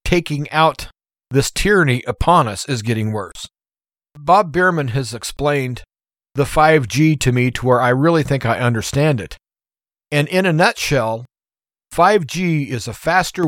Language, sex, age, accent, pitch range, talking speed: English, male, 40-59, American, 120-150 Hz, 145 wpm